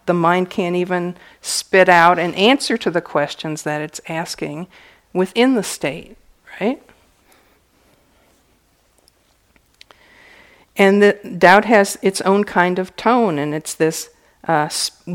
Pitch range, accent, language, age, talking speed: 170-205 Hz, American, English, 50-69, 125 wpm